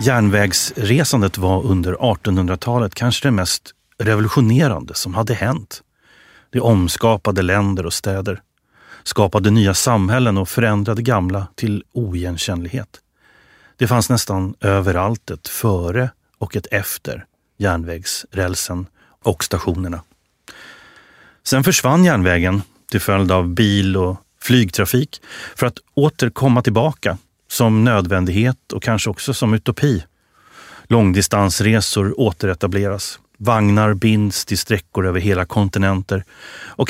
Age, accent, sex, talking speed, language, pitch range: 30-49, Swedish, male, 105 wpm, English, 95-120 Hz